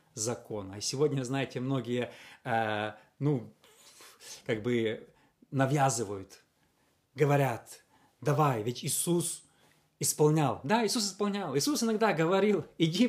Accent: native